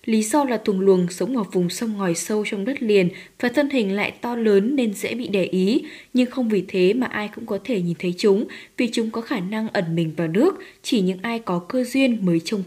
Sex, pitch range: female, 190-250 Hz